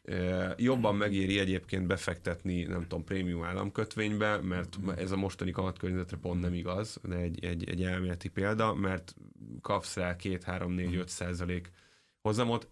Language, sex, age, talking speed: Hungarian, male, 20-39, 130 wpm